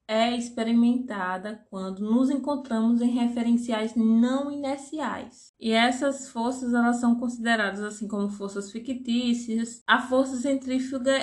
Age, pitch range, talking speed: 20-39, 215-255 Hz, 120 wpm